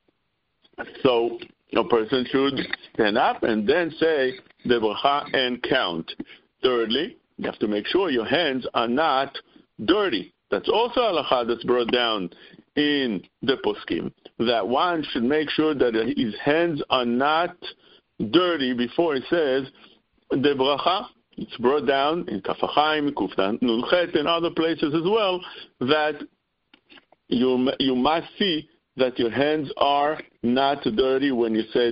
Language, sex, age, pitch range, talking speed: English, male, 60-79, 115-145 Hz, 135 wpm